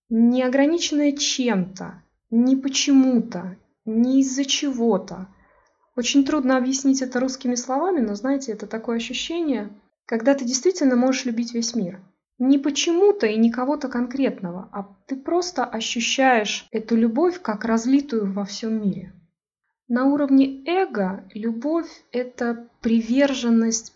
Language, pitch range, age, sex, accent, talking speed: Russian, 205-270 Hz, 20-39, female, native, 125 wpm